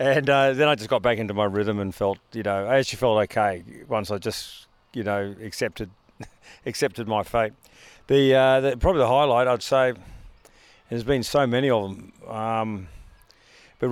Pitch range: 105-125 Hz